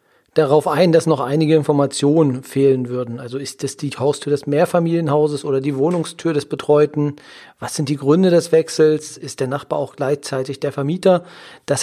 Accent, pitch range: German, 130-160 Hz